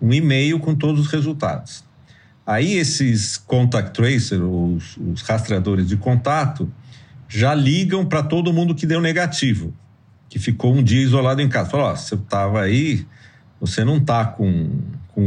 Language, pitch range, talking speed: Portuguese, 110-155 Hz, 155 wpm